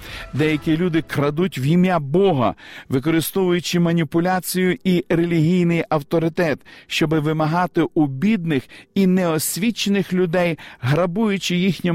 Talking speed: 100 wpm